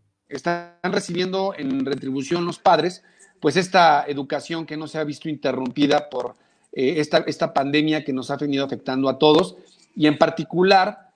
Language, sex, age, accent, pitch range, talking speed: Spanish, male, 40-59, Mexican, 140-180 Hz, 160 wpm